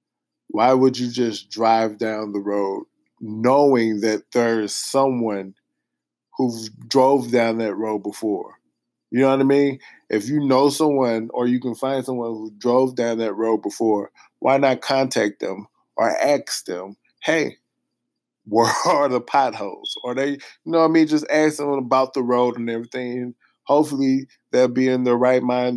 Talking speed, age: 170 wpm, 20-39